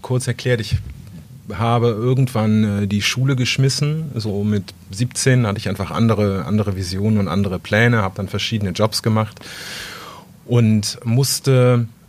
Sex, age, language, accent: male, 30-49, German, German